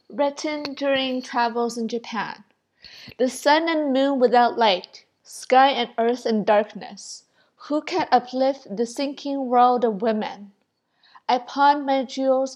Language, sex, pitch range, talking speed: English, female, 220-265 Hz, 135 wpm